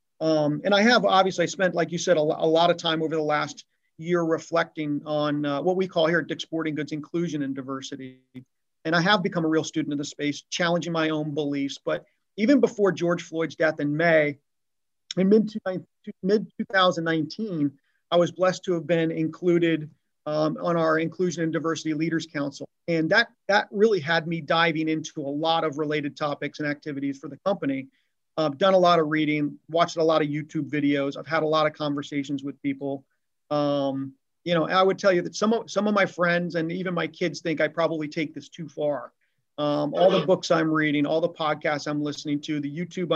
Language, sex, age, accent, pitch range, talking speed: English, male, 40-59, American, 150-180 Hz, 205 wpm